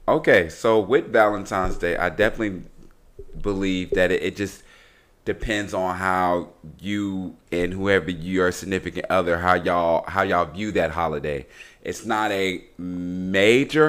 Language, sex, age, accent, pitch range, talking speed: English, male, 30-49, American, 95-125 Hz, 145 wpm